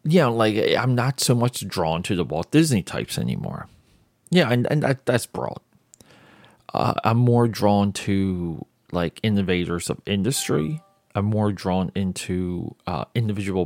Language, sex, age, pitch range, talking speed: English, male, 30-49, 90-120 Hz, 145 wpm